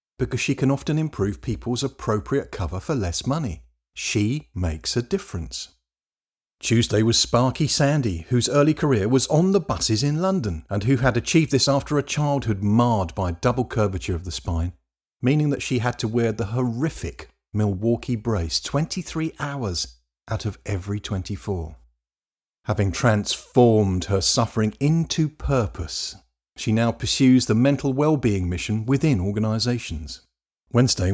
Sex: male